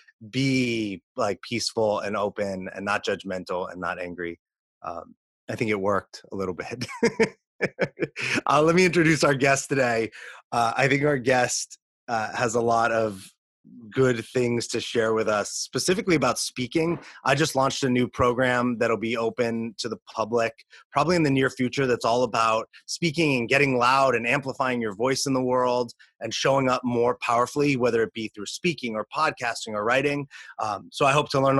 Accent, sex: American, male